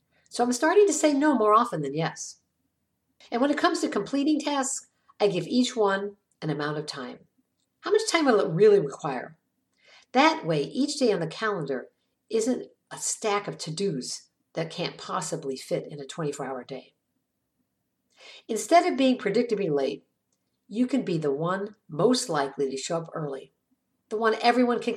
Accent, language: American, English